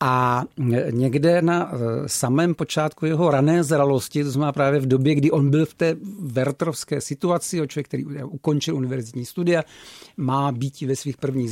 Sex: male